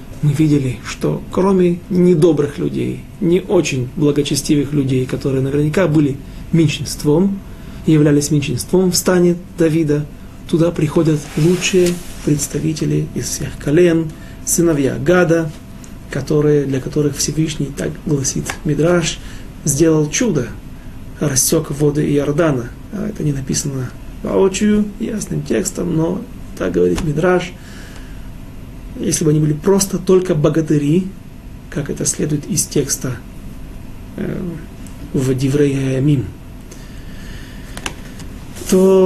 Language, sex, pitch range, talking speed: Russian, male, 140-175 Hz, 100 wpm